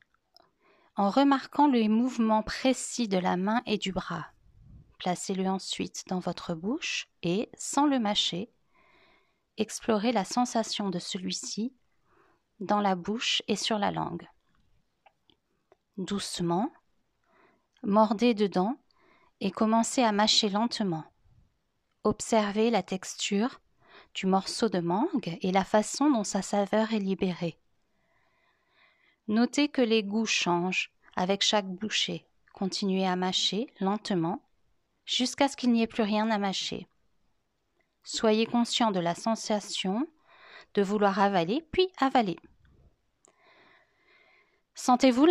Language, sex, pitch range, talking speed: French, female, 195-260 Hz, 115 wpm